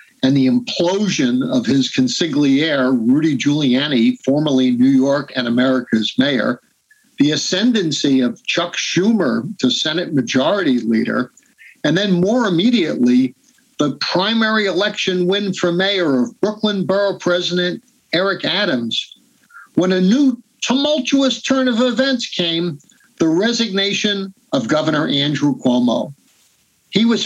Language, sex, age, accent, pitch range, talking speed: English, male, 50-69, American, 160-245 Hz, 120 wpm